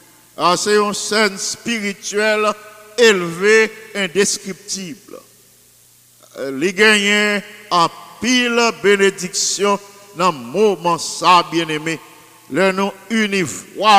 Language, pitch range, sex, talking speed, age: English, 165-210 Hz, male, 100 wpm, 50-69